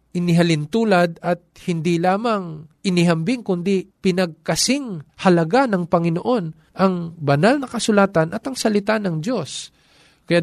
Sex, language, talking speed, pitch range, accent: male, Filipino, 115 wpm, 145-185 Hz, native